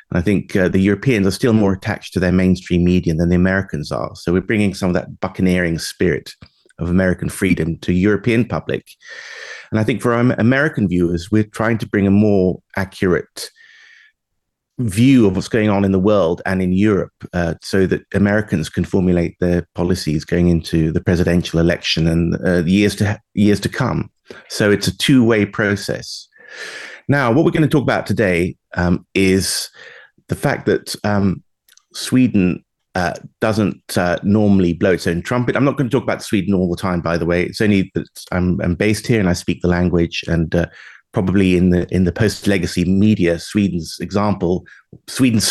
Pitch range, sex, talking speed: 90-110 Hz, male, 185 wpm